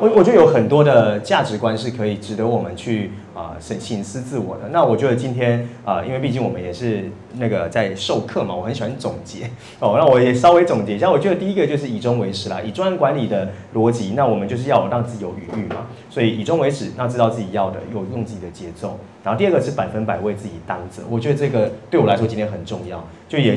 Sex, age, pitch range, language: male, 30-49, 105-125 Hz, Chinese